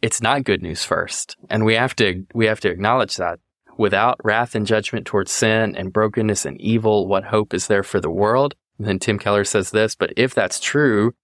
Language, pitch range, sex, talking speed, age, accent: English, 95-110 Hz, male, 220 wpm, 20-39, American